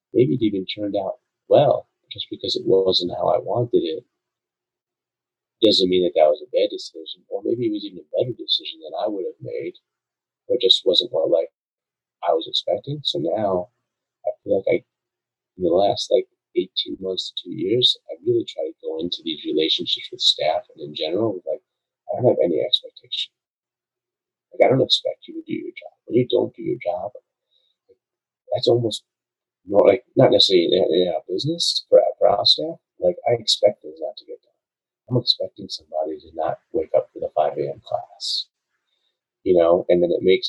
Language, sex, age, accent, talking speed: English, male, 40-59, American, 200 wpm